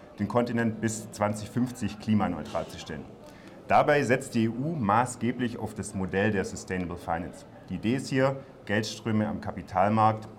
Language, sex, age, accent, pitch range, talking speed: German, male, 40-59, German, 100-125 Hz, 145 wpm